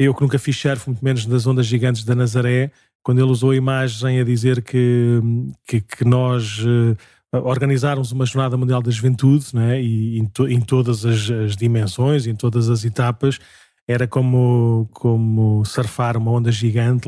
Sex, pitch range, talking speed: male, 115-135 Hz, 180 wpm